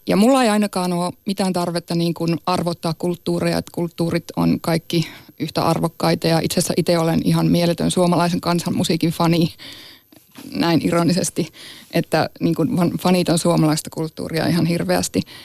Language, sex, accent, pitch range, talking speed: Finnish, female, native, 160-175 Hz, 140 wpm